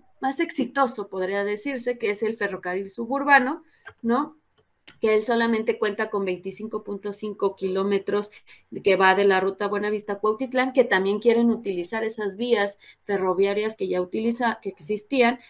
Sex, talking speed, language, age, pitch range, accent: female, 145 wpm, Spanish, 30-49, 200-255 Hz, Mexican